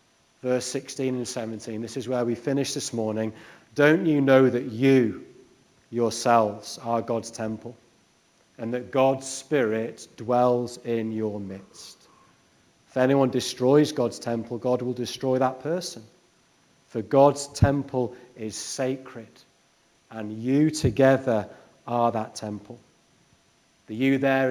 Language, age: English, 40-59